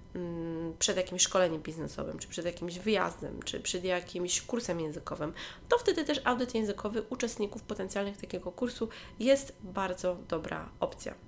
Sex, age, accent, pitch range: female, 20-39, native, 185-240 Hz